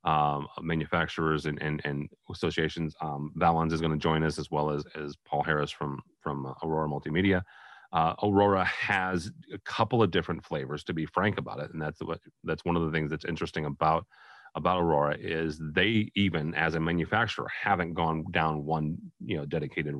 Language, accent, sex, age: English, American, male, 30-49